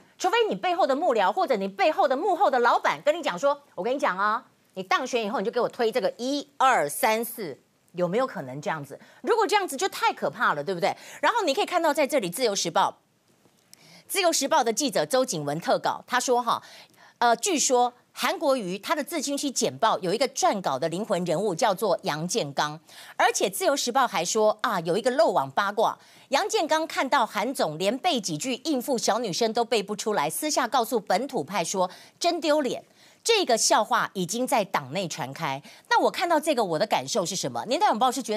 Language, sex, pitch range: Chinese, female, 205-300 Hz